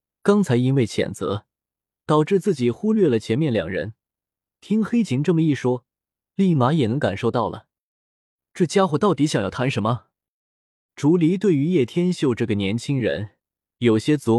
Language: Chinese